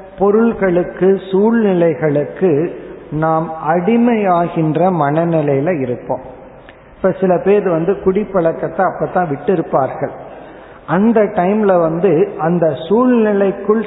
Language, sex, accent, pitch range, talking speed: Tamil, male, native, 155-195 Hz, 80 wpm